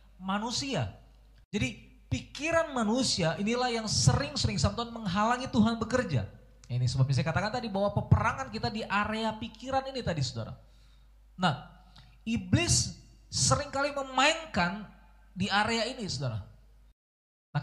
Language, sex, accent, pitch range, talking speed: Indonesian, male, native, 125-180 Hz, 115 wpm